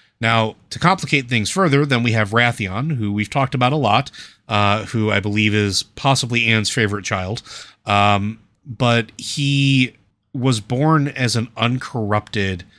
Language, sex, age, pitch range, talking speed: English, male, 30-49, 100-120 Hz, 150 wpm